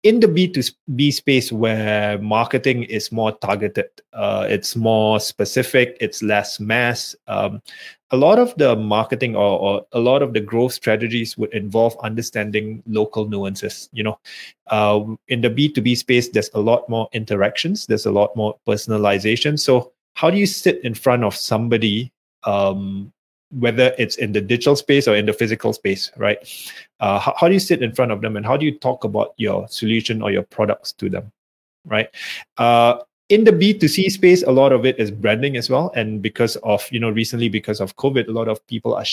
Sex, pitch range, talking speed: male, 105-135 Hz, 190 wpm